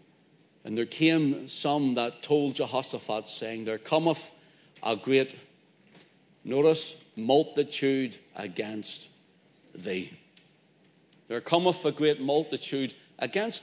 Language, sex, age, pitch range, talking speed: English, male, 60-79, 125-160 Hz, 95 wpm